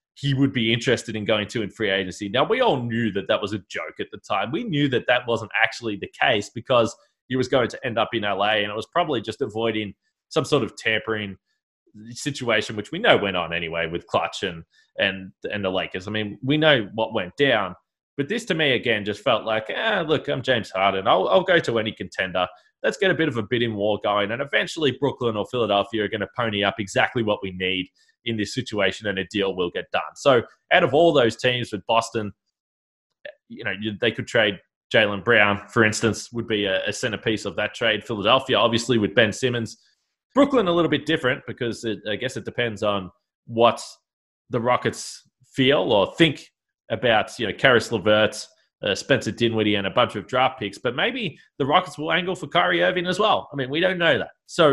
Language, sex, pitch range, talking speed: English, male, 100-130 Hz, 220 wpm